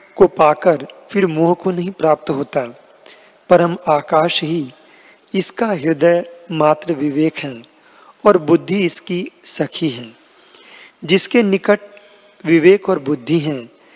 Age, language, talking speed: 40-59, Hindi, 115 wpm